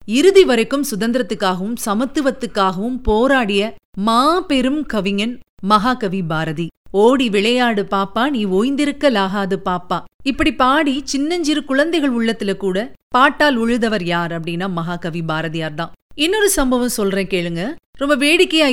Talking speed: 110 wpm